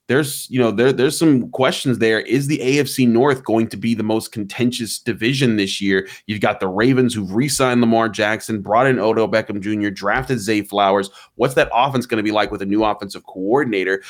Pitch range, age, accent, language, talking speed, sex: 105-130 Hz, 30-49, American, English, 210 wpm, male